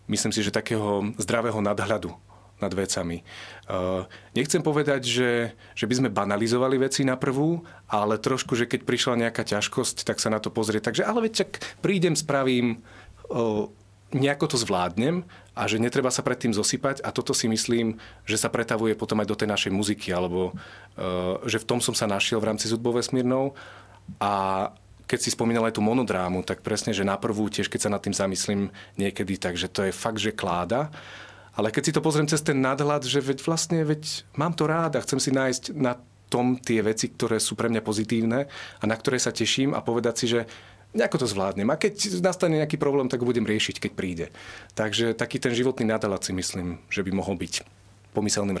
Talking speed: 195 wpm